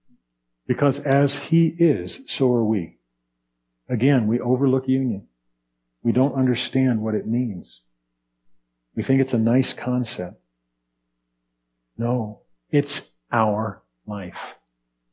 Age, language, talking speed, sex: 50-69, English, 105 wpm, male